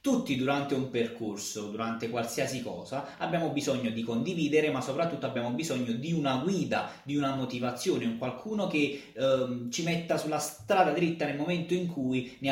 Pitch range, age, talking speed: 135-185 Hz, 20-39, 170 wpm